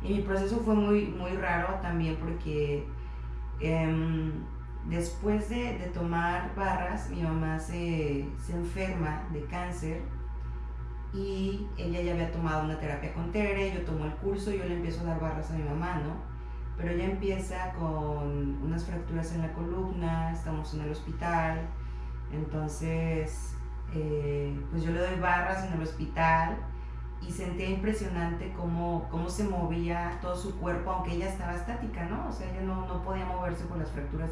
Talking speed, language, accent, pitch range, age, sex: 165 wpm, Spanish, Mexican, 150-180 Hz, 30-49, female